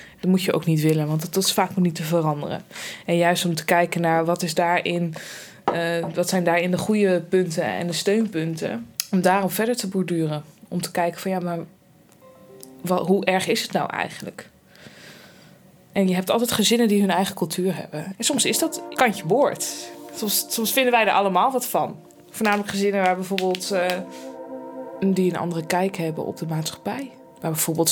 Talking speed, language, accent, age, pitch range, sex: 190 wpm, Dutch, Dutch, 20-39, 165-200 Hz, female